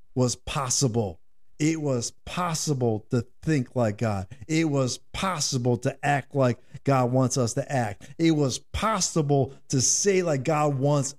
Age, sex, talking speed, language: 50-69, male, 150 wpm, English